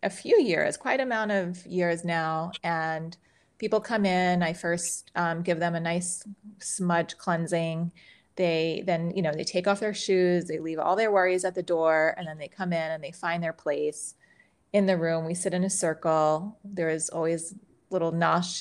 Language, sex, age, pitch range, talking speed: English, female, 30-49, 160-185 Hz, 195 wpm